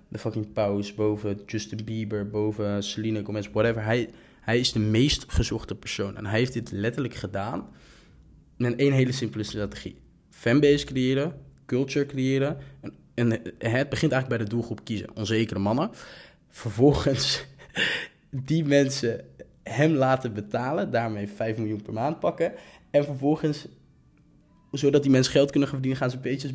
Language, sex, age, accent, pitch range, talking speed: Dutch, male, 20-39, Dutch, 105-130 Hz, 150 wpm